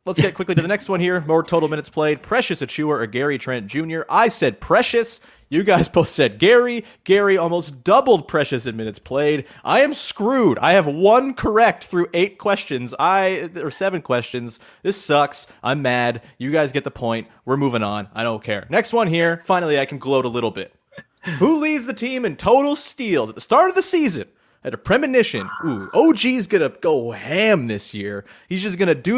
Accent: American